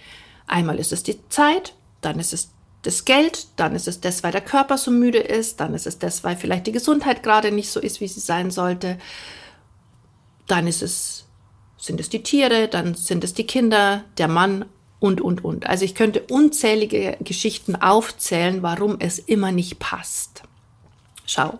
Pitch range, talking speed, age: 180-230 Hz, 180 wpm, 50-69